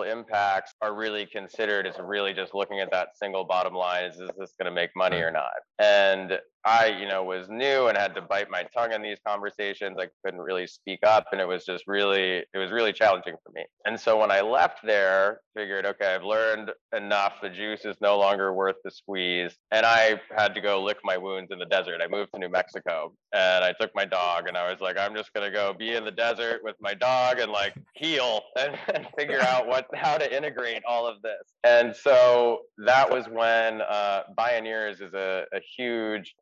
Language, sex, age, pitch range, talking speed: English, male, 20-39, 95-110 Hz, 220 wpm